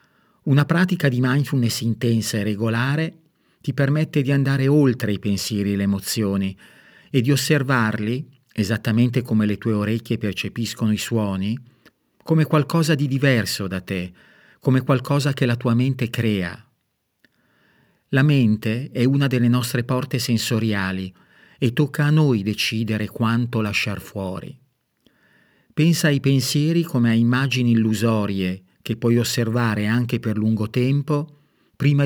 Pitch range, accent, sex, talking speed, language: 110-140 Hz, native, male, 135 wpm, Italian